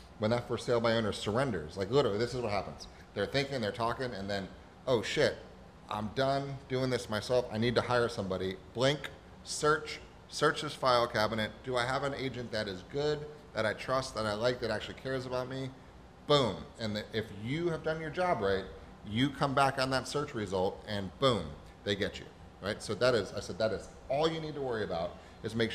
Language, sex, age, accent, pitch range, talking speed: English, male, 30-49, American, 100-135 Hz, 220 wpm